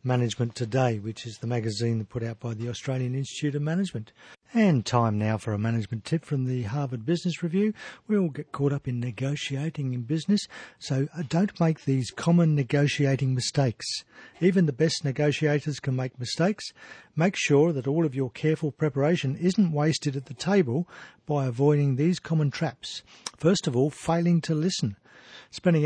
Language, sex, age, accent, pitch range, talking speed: English, male, 50-69, Australian, 130-170 Hz, 170 wpm